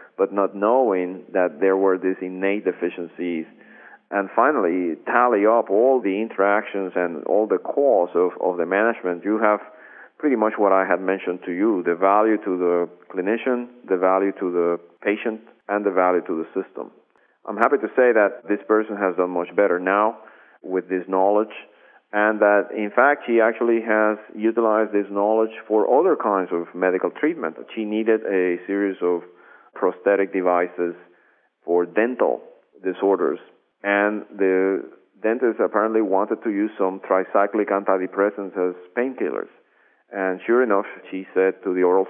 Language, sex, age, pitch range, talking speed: English, male, 40-59, 90-105 Hz, 160 wpm